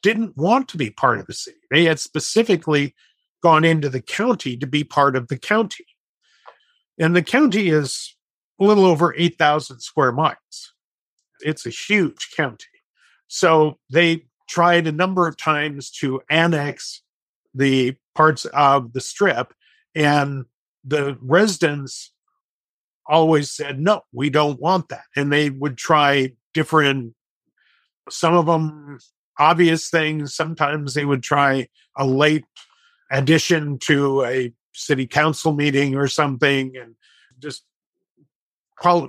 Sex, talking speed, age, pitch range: male, 130 wpm, 50-69, 135-170 Hz